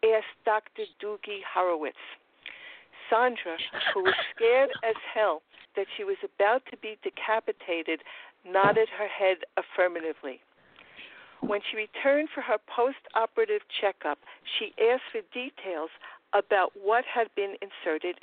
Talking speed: 120 wpm